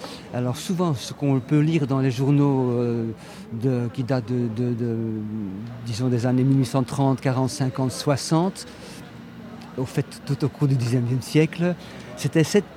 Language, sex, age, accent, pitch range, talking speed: French, male, 50-69, French, 125-160 Hz, 150 wpm